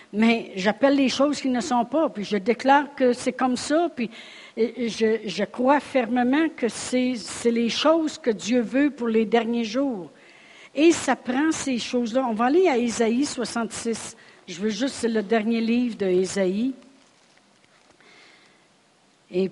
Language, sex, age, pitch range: French, female, 60-79, 185-240 Hz